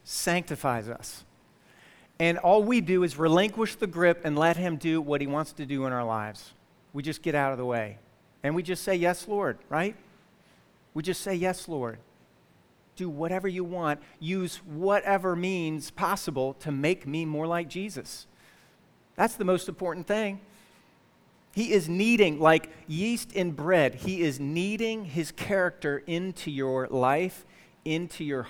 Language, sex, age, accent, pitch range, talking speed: English, male, 40-59, American, 150-190 Hz, 160 wpm